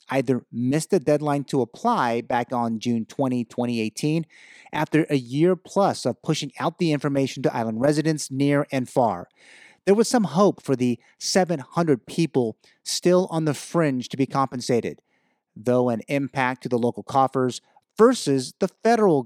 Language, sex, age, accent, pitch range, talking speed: English, male, 30-49, American, 125-165 Hz, 160 wpm